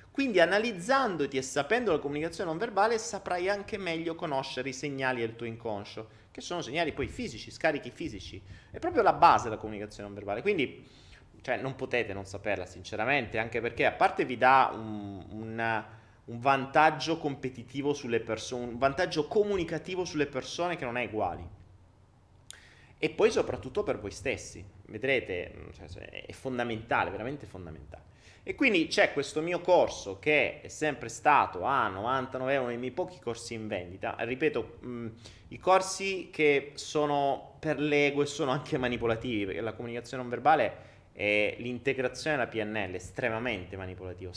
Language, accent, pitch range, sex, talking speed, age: Italian, native, 110-150 Hz, male, 155 wpm, 30-49